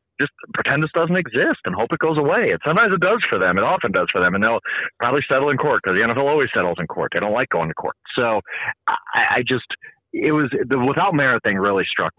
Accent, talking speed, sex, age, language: American, 255 wpm, male, 30-49, English